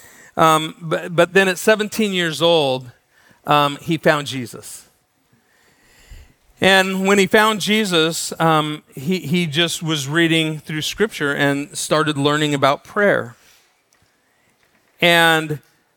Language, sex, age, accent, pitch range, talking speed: English, male, 40-59, American, 125-170 Hz, 115 wpm